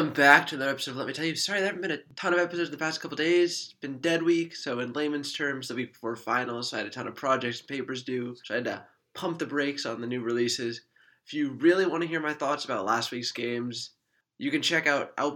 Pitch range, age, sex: 130-165 Hz, 20-39, male